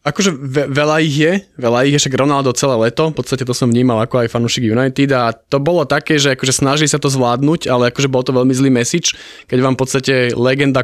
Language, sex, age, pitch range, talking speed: Slovak, male, 20-39, 120-140 Hz, 235 wpm